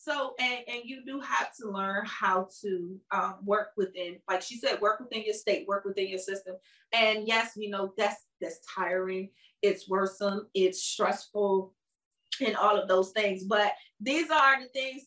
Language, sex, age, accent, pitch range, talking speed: English, female, 30-49, American, 200-250 Hz, 180 wpm